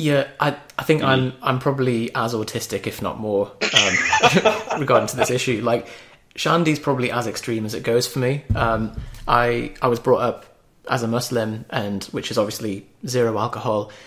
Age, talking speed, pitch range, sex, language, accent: 30-49, 180 wpm, 105-130 Hz, male, English, British